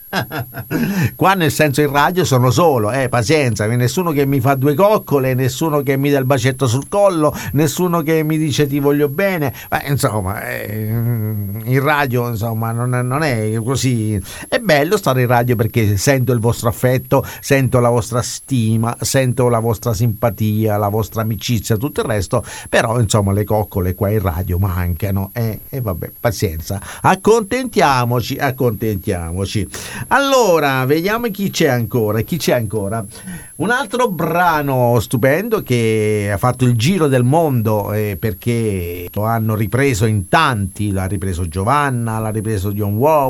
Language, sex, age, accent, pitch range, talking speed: Italian, male, 50-69, native, 105-140 Hz, 155 wpm